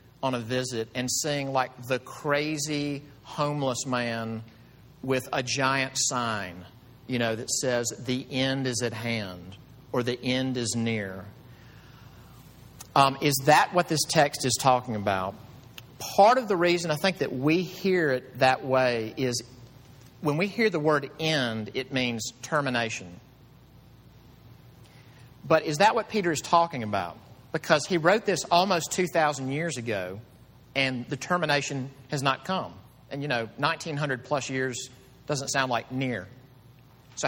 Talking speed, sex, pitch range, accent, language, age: 150 wpm, male, 125-150 Hz, American, English, 50-69